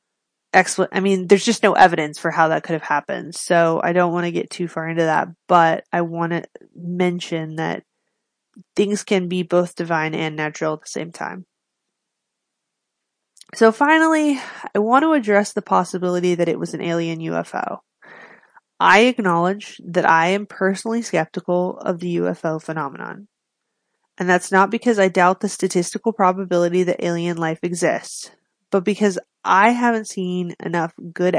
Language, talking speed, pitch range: English, 160 wpm, 170-205 Hz